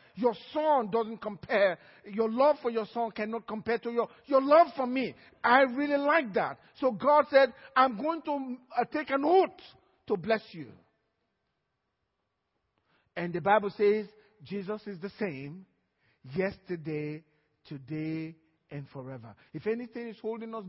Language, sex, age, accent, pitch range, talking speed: English, male, 50-69, Nigerian, 170-265 Hz, 150 wpm